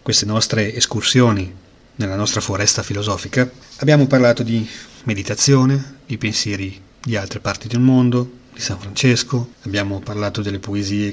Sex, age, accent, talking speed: male, 30-49, native, 135 wpm